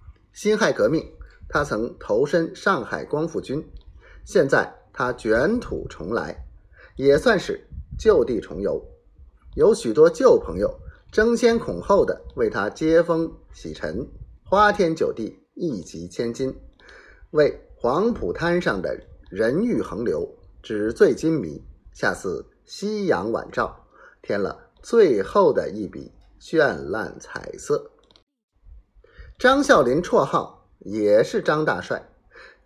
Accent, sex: native, male